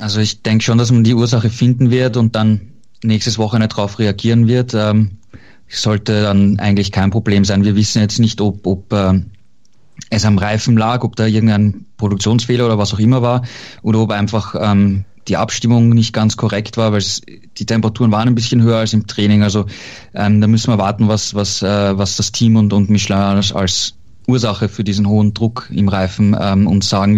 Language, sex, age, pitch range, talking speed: German, male, 20-39, 105-120 Hz, 205 wpm